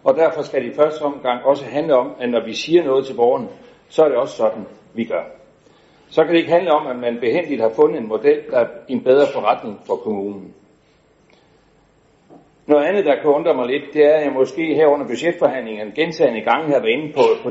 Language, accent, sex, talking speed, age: Danish, native, male, 225 wpm, 60-79